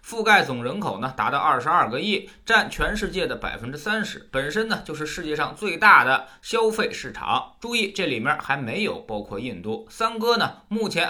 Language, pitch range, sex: Chinese, 145-210 Hz, male